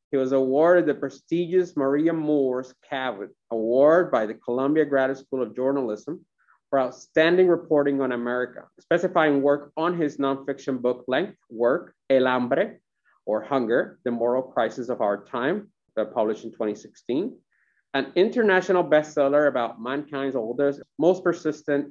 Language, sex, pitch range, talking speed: English, male, 130-165 Hz, 135 wpm